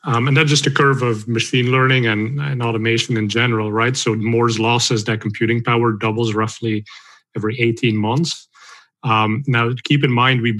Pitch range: 115-130 Hz